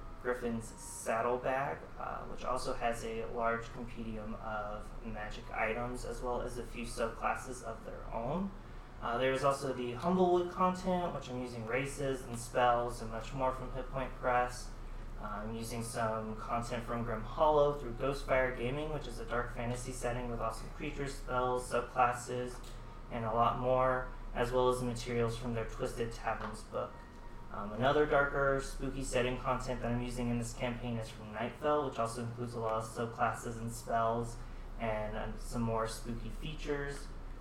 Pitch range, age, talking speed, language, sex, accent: 115-130 Hz, 30-49, 165 wpm, English, male, American